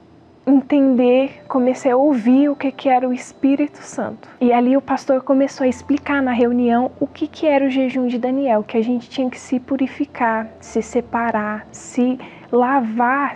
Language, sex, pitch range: Portuguese, female, 235-275 Hz